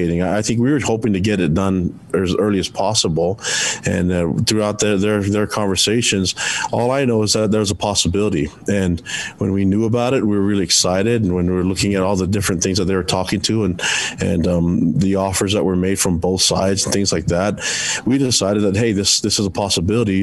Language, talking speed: English, 230 wpm